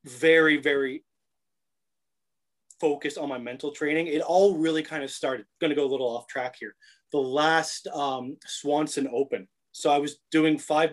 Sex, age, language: male, 30-49, English